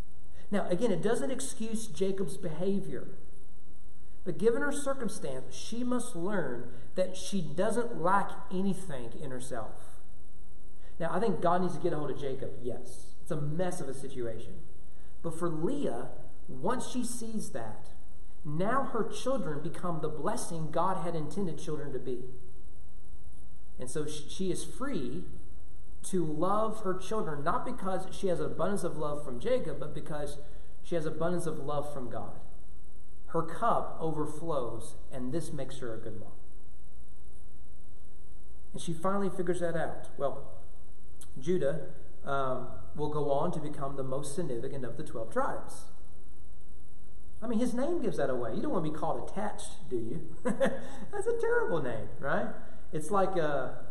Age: 40-59